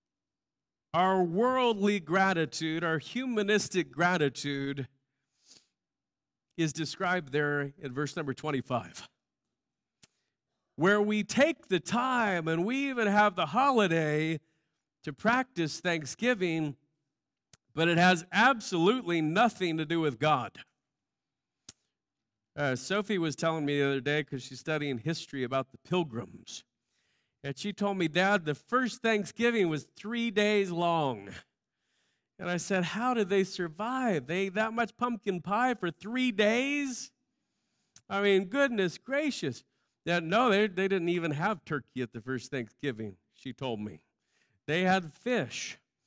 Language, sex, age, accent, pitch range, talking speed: English, male, 40-59, American, 145-210 Hz, 130 wpm